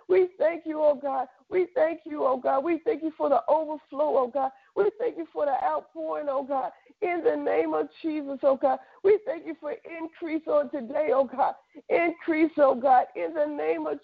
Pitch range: 265-330 Hz